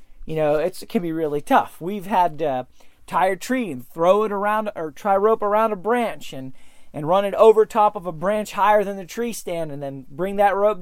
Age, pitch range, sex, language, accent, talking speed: 30-49, 170-225 Hz, male, English, American, 235 wpm